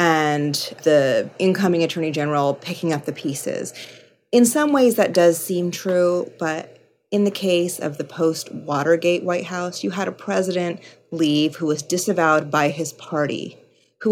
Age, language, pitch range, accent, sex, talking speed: 30-49, English, 150-180 Hz, American, female, 155 wpm